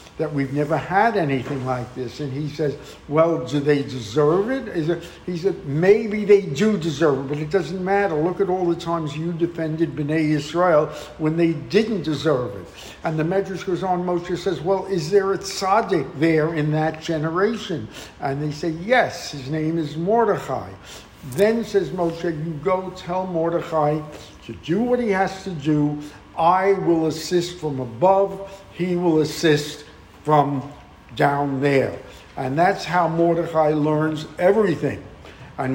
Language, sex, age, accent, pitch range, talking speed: English, male, 60-79, American, 150-190 Hz, 165 wpm